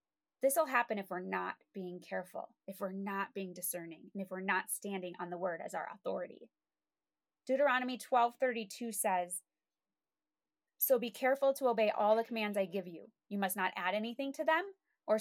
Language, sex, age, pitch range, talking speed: English, female, 20-39, 195-265 Hz, 185 wpm